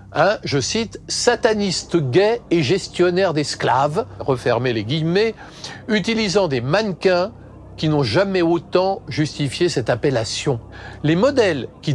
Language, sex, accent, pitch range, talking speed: French, male, French, 130-195 Hz, 120 wpm